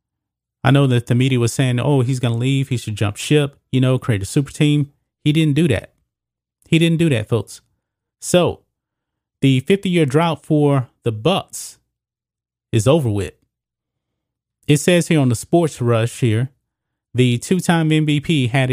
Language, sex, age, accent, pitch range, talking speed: English, male, 30-49, American, 115-145 Hz, 175 wpm